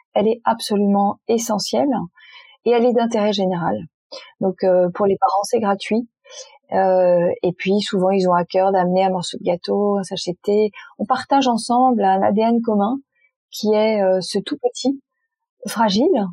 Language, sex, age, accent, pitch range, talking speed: French, female, 30-49, French, 190-240 Hz, 160 wpm